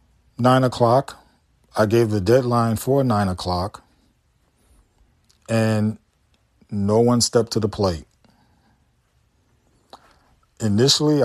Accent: American